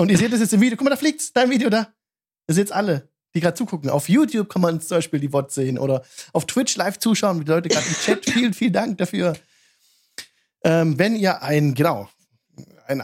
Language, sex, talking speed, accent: German, male, 230 wpm, German